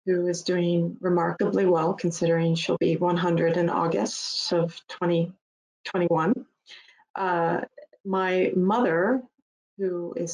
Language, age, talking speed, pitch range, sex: English, 30-49, 105 wpm, 170-195 Hz, female